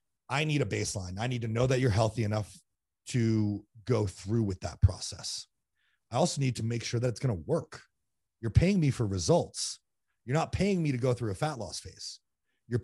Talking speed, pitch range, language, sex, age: 215 wpm, 110-145 Hz, English, male, 30-49